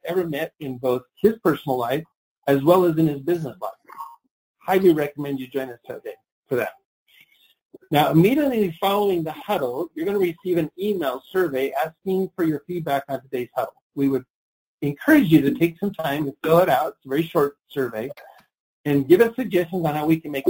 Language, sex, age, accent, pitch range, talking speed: English, male, 40-59, American, 135-185 Hz, 195 wpm